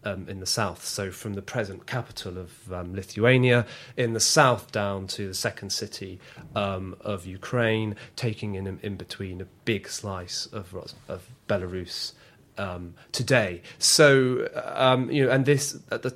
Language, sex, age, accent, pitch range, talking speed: English, male, 30-49, British, 95-125 Hz, 160 wpm